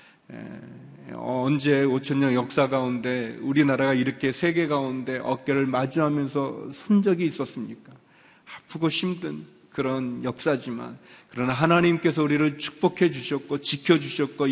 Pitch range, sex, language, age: 140-170 Hz, male, Korean, 40-59